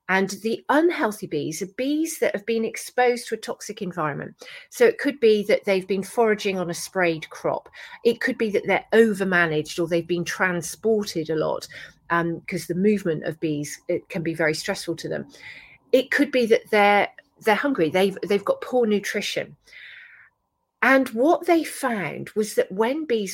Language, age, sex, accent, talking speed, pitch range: English, 40-59, female, British, 185 wpm, 185-255 Hz